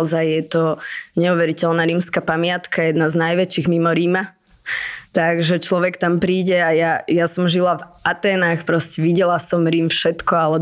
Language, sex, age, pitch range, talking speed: Slovak, female, 20-39, 170-195 Hz, 155 wpm